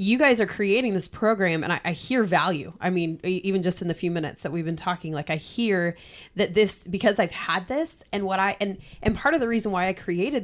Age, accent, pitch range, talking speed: 20-39, American, 170-205 Hz, 255 wpm